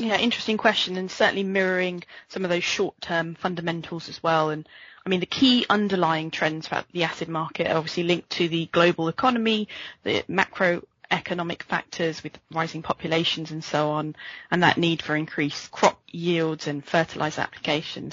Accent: British